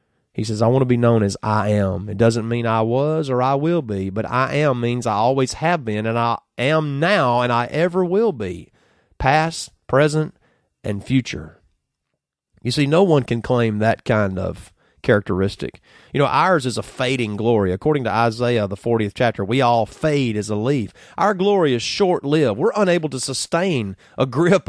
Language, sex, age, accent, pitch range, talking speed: English, male, 30-49, American, 115-150 Hz, 190 wpm